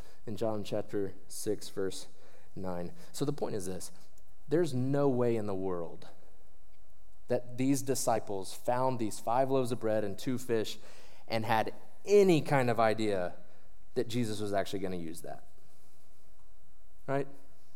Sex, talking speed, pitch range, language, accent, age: male, 150 wpm, 115-160 Hz, English, American, 20-39